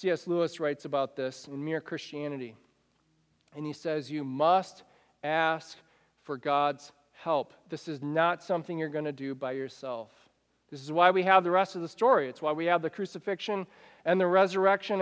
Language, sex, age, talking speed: English, male, 40-59, 185 wpm